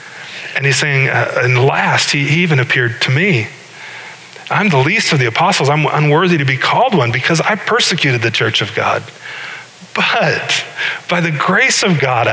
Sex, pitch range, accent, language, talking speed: male, 120-165 Hz, American, English, 180 wpm